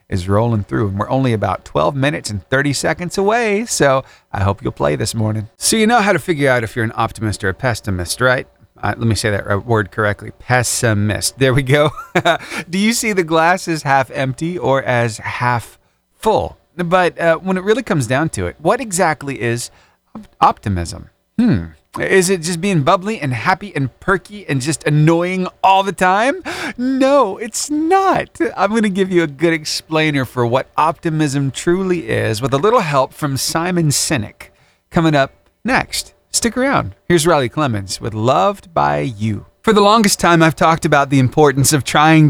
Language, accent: English, American